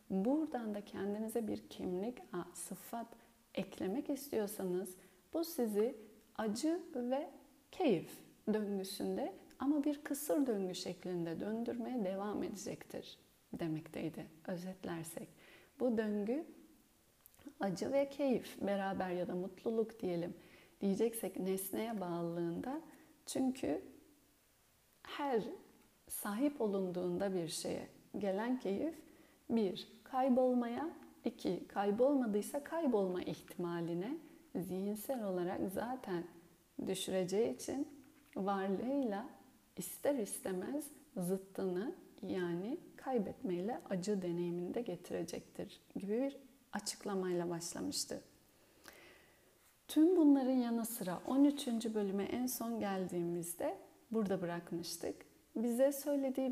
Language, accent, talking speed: Turkish, native, 85 wpm